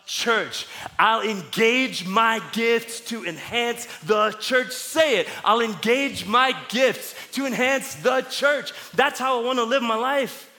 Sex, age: male, 30-49